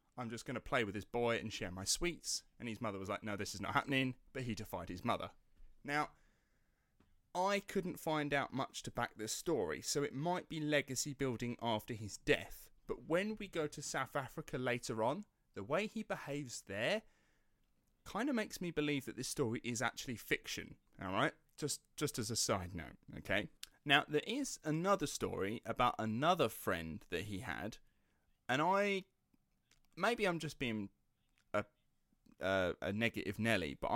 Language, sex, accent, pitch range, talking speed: English, male, British, 110-150 Hz, 180 wpm